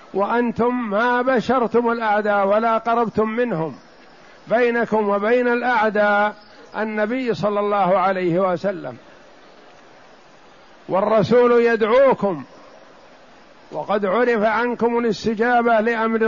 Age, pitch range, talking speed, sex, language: 50-69, 195-230 Hz, 80 wpm, male, Arabic